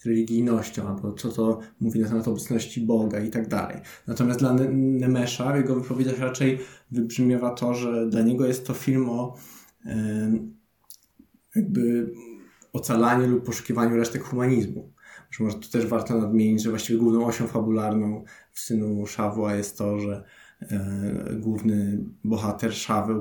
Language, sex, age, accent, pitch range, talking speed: Polish, male, 20-39, native, 110-125 Hz, 140 wpm